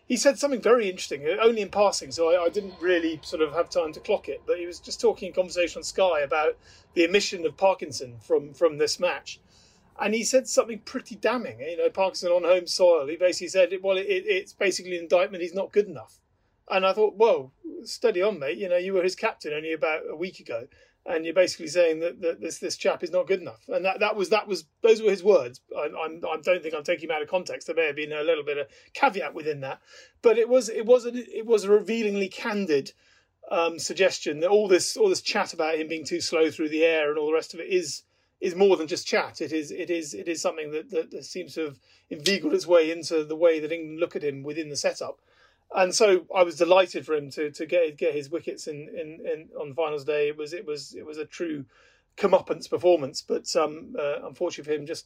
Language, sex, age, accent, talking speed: English, male, 30-49, British, 250 wpm